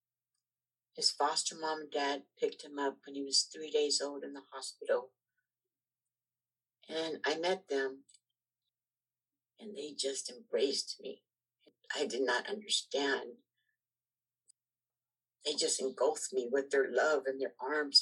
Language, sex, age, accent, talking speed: English, female, 60-79, American, 135 wpm